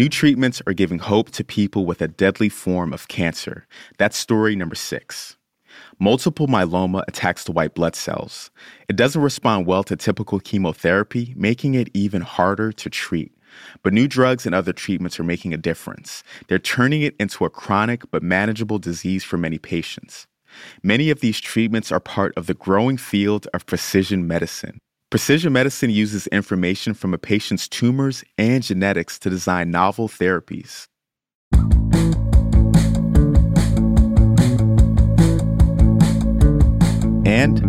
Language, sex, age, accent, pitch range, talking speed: English, male, 30-49, American, 90-115 Hz, 140 wpm